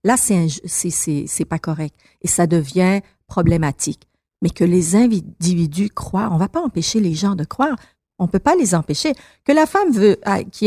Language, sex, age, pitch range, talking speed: French, female, 50-69, 170-235 Hz, 190 wpm